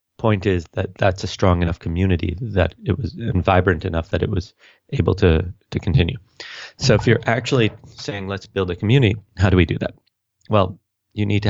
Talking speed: 205 wpm